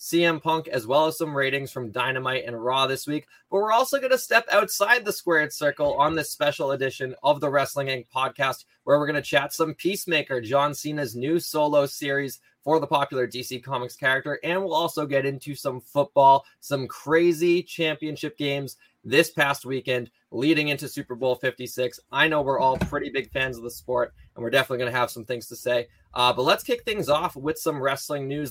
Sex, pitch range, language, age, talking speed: male, 125-155 Hz, English, 20-39, 210 wpm